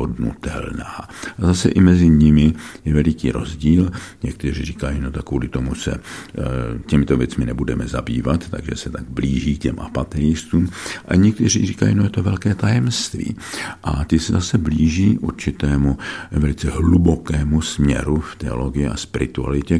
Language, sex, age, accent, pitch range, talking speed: Czech, male, 50-69, native, 70-85 Hz, 140 wpm